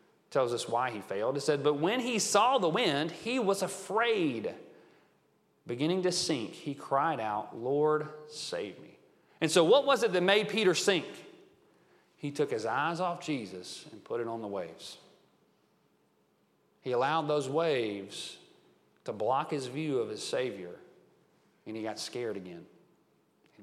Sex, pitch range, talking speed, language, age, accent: male, 145-200 Hz, 160 wpm, English, 40-59, American